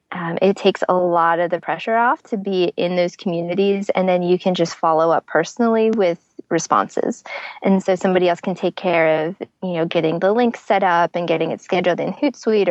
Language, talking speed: English, 210 wpm